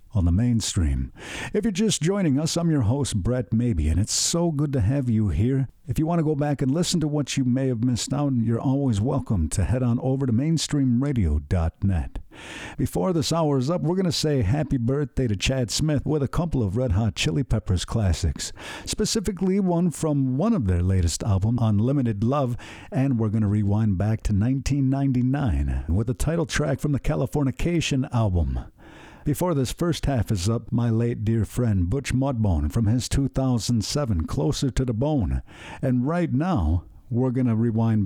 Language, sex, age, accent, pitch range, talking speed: English, male, 50-69, American, 105-145 Hz, 185 wpm